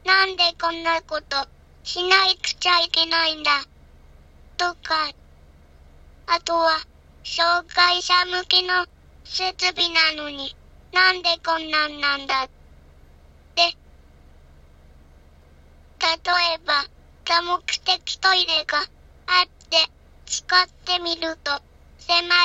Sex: male